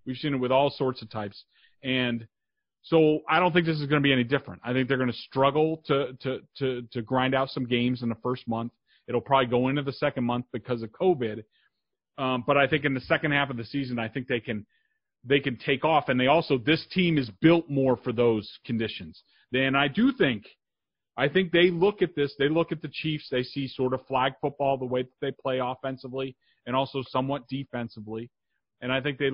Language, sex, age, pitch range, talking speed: English, male, 40-59, 125-155 Hz, 230 wpm